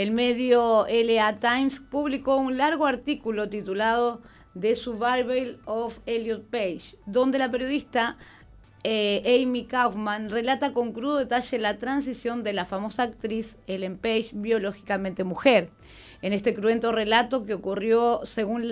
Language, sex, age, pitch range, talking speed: Spanish, female, 30-49, 215-255 Hz, 130 wpm